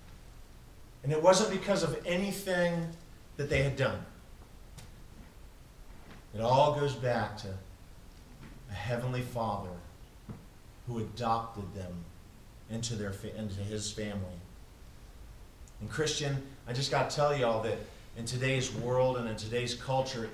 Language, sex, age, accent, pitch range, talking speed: English, male, 40-59, American, 100-135 Hz, 125 wpm